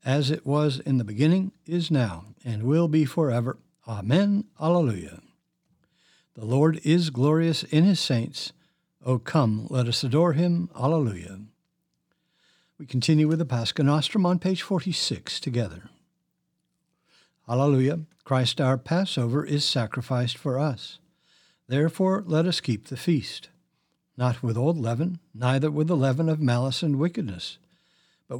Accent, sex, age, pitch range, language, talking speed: American, male, 60-79, 125-170 Hz, English, 135 wpm